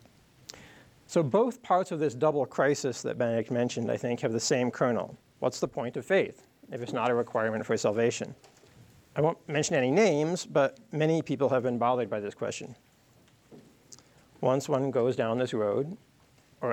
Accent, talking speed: American, 175 wpm